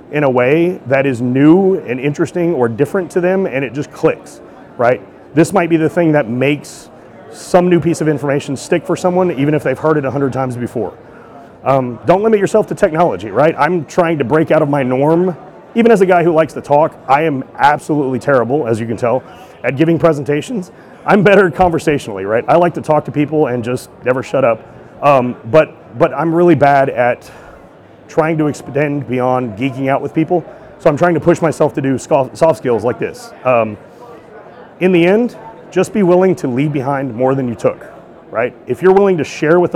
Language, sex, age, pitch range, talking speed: English, male, 30-49, 135-175 Hz, 210 wpm